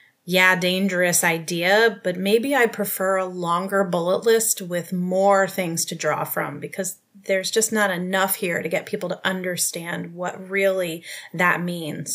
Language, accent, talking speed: English, American, 160 wpm